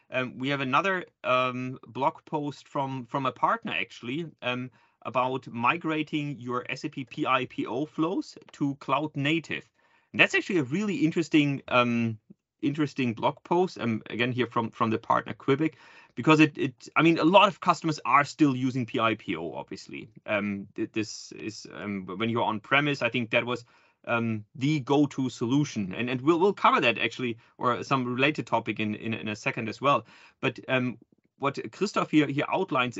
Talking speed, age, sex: 175 wpm, 30-49, male